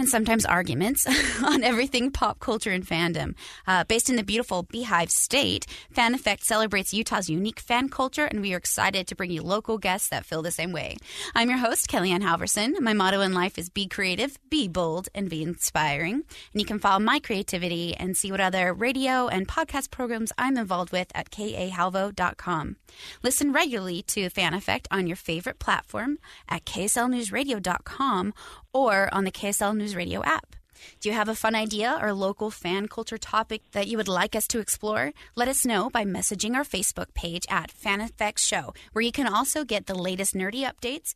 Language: English